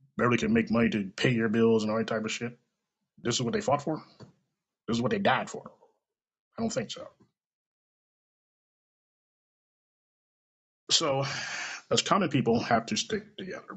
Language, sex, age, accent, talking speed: English, male, 30-49, American, 165 wpm